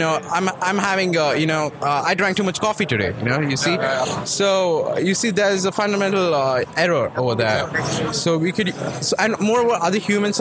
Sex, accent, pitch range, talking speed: male, Indian, 145-190 Hz, 215 wpm